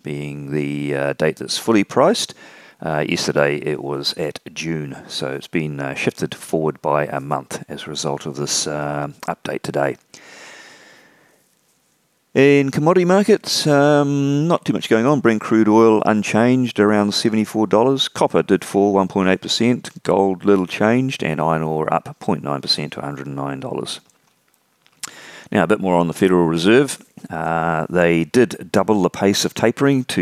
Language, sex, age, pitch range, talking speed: English, male, 40-59, 75-110 Hz, 150 wpm